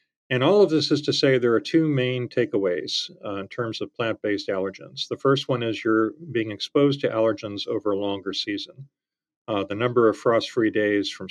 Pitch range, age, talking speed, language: 100-135 Hz, 40-59, 200 wpm, English